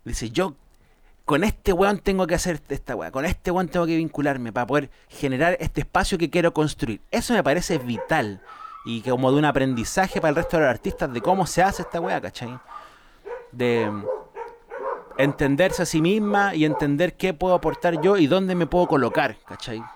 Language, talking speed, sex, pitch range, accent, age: Spanish, 190 wpm, male, 130-175 Hz, Argentinian, 30-49